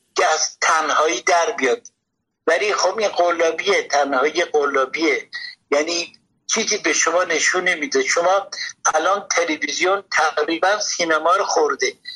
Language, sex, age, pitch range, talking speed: Persian, male, 60-79, 150-225 Hz, 140 wpm